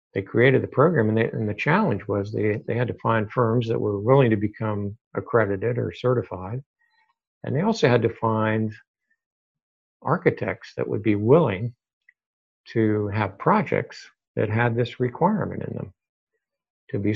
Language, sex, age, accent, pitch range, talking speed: English, male, 60-79, American, 105-130 Hz, 155 wpm